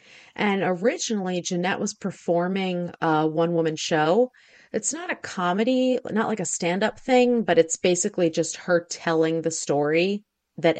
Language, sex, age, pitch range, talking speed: English, female, 30-49, 160-195 Hz, 155 wpm